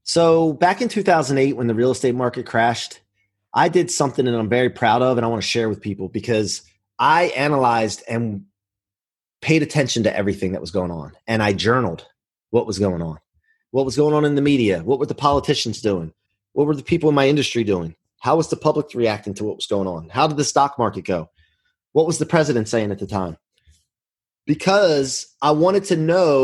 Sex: male